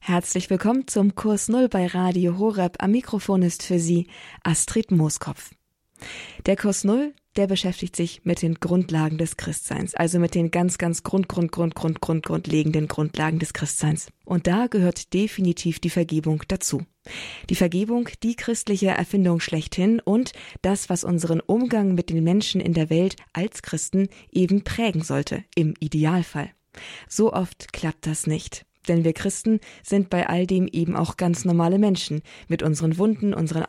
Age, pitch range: 20-39, 160-195 Hz